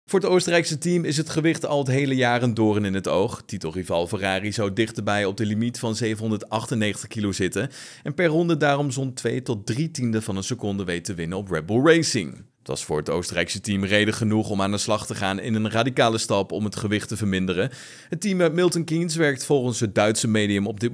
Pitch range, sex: 105-150 Hz, male